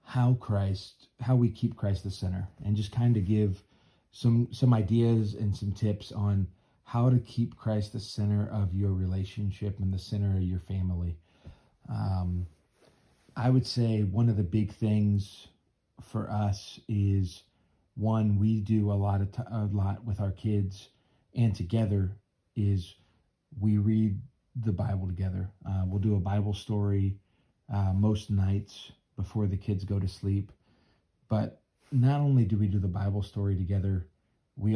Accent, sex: American, male